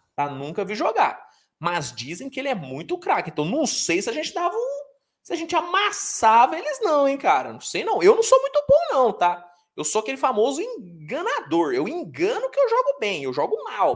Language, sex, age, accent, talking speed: Portuguese, male, 20-39, Brazilian, 220 wpm